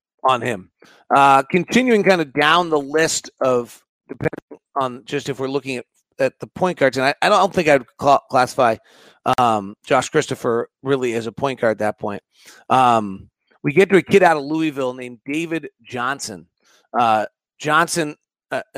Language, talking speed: English, 175 wpm